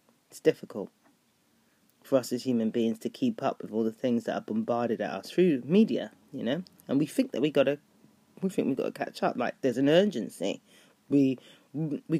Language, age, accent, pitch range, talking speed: English, 20-39, British, 125-175 Hz, 200 wpm